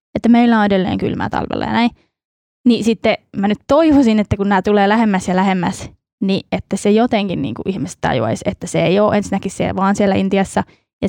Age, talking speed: 20-39, 205 wpm